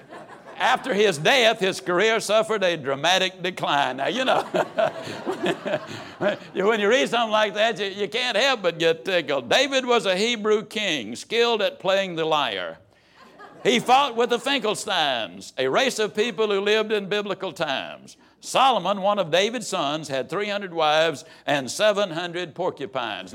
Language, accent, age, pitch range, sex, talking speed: English, American, 60-79, 165-230 Hz, male, 155 wpm